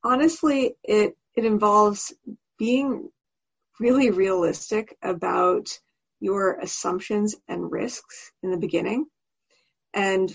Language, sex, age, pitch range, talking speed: English, female, 30-49, 185-230 Hz, 95 wpm